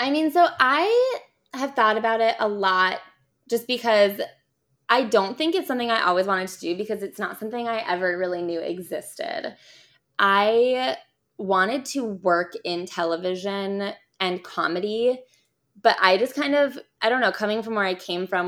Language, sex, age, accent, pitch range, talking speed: English, female, 20-39, American, 175-220 Hz, 170 wpm